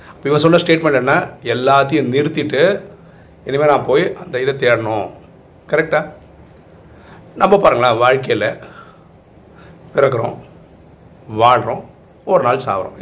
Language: Tamil